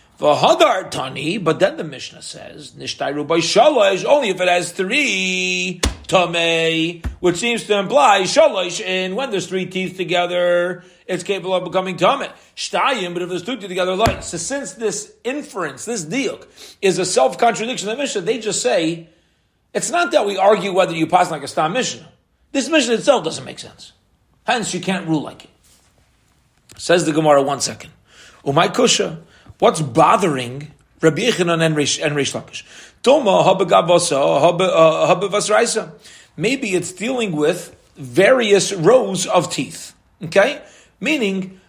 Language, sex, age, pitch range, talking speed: English, male, 40-59, 165-210 Hz, 140 wpm